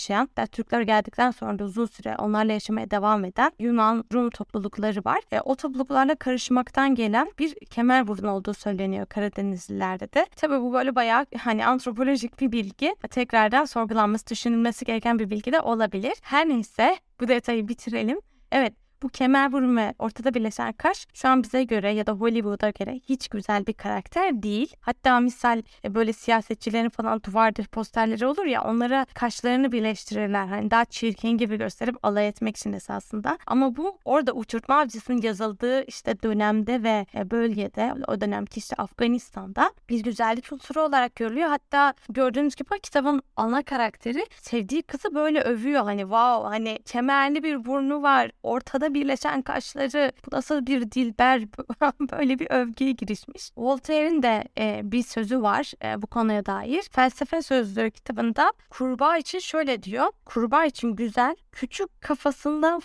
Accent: native